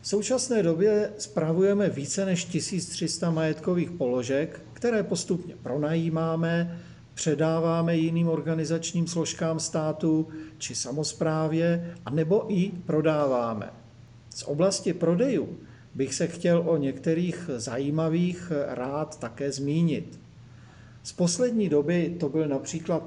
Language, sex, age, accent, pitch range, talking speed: Czech, male, 50-69, native, 145-170 Hz, 105 wpm